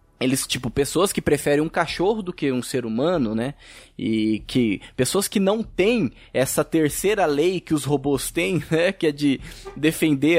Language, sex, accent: Portuguese, male, Brazilian